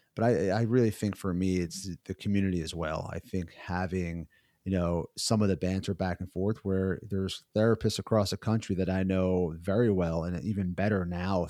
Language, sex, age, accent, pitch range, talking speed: English, male, 30-49, American, 95-110 Hz, 205 wpm